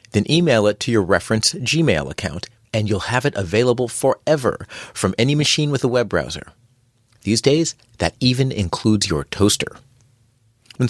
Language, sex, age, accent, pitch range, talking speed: English, male, 40-59, American, 95-125 Hz, 160 wpm